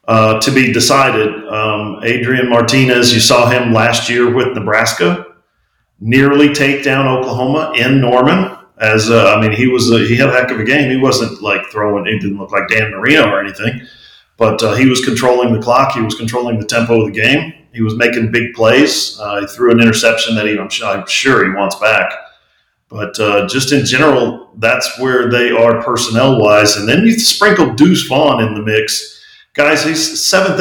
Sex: male